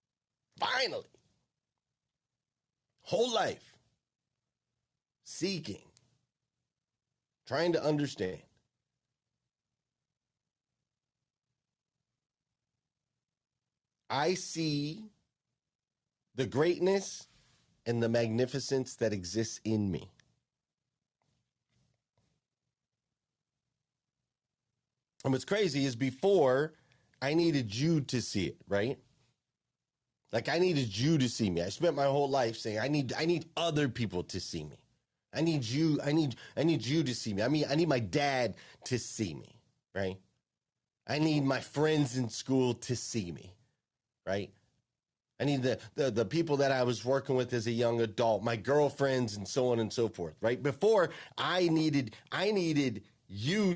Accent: American